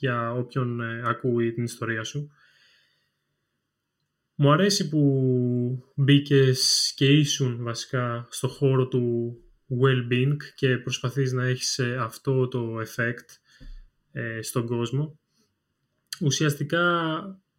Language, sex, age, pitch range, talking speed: Greek, male, 20-39, 130-150 Hz, 100 wpm